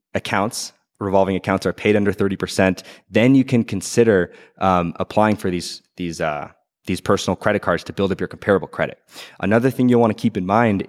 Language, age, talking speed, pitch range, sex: English, 20-39, 200 wpm, 95-115 Hz, male